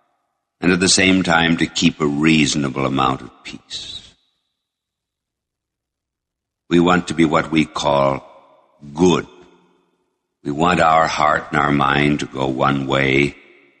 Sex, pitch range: male, 70-95 Hz